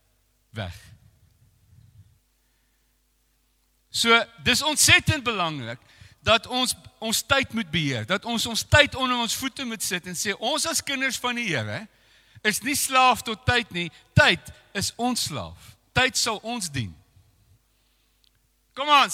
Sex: male